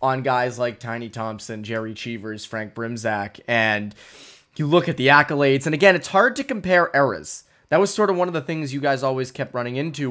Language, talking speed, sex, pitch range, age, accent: English, 215 wpm, male, 125-160 Hz, 20-39, American